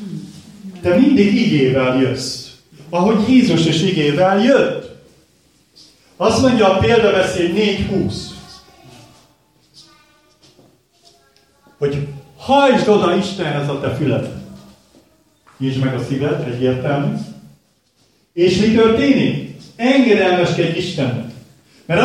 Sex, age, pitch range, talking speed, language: male, 40-59, 130-195 Hz, 90 wpm, Hungarian